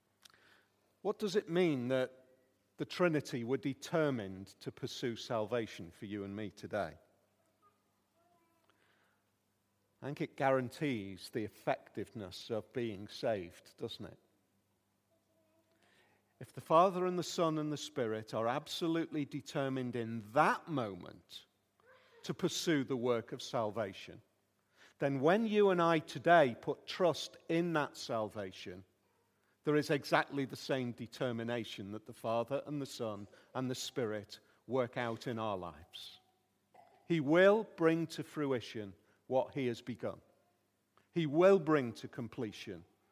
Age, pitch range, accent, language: 50-69, 110-160 Hz, British, English